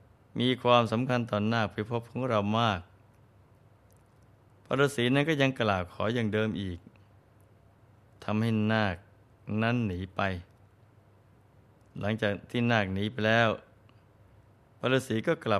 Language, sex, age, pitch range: Thai, male, 20-39, 105-115 Hz